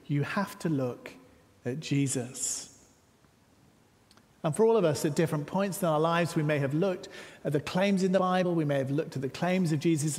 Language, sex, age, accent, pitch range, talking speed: English, male, 50-69, British, 135-185 Hz, 210 wpm